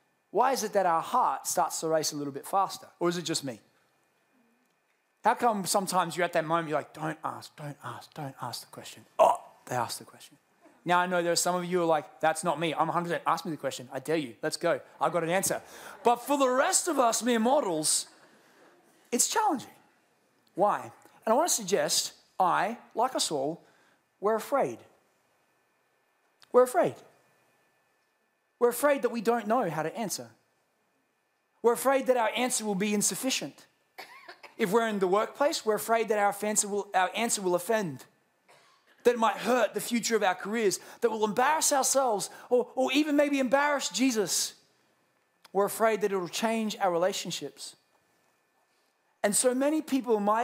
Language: English